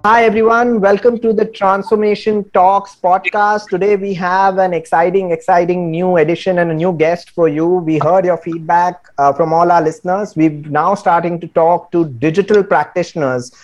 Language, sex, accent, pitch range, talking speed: English, male, Indian, 160-190 Hz, 170 wpm